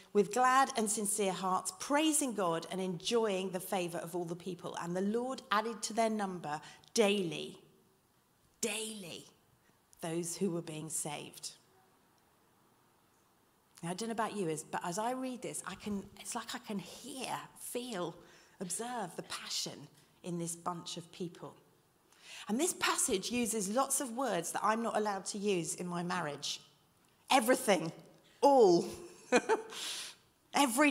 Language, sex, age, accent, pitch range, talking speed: English, female, 40-59, British, 180-255 Hz, 145 wpm